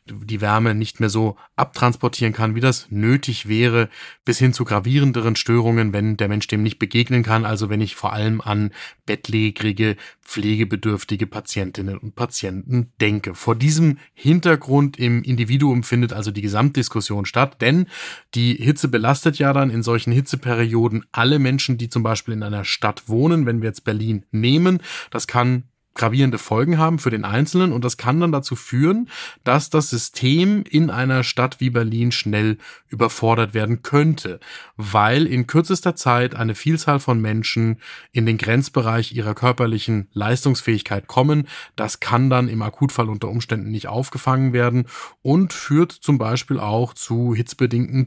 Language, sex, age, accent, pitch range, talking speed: German, male, 30-49, German, 110-135 Hz, 155 wpm